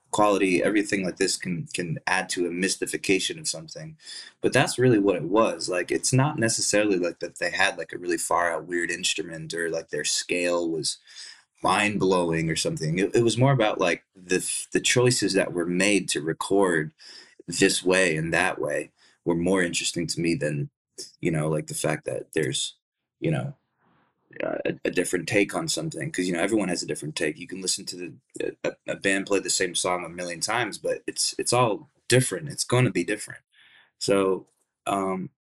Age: 20-39